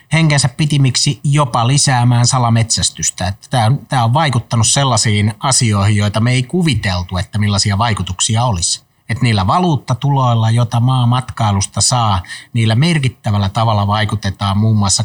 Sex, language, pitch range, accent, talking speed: male, Finnish, 105-130 Hz, native, 130 wpm